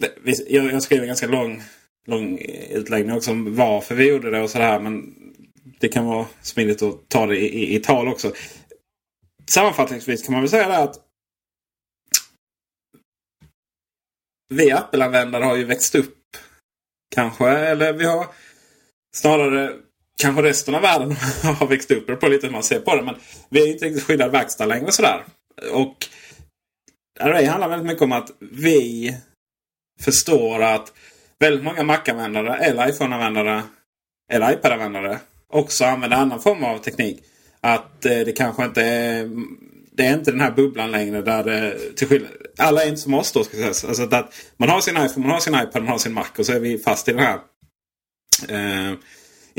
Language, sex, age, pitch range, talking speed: Swedish, male, 30-49, 115-150 Hz, 175 wpm